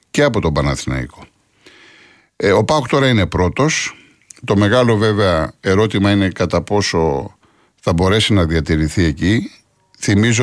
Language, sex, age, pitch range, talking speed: Greek, male, 50-69, 90-120 Hz, 125 wpm